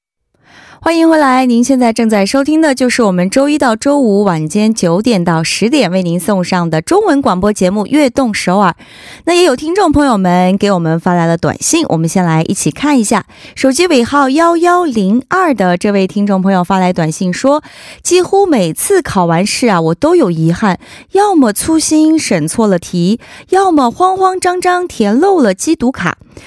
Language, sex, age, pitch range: Korean, female, 20-39, 185-285 Hz